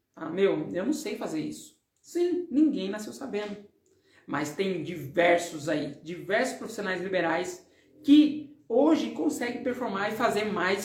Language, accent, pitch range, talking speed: Portuguese, Brazilian, 215-305 Hz, 140 wpm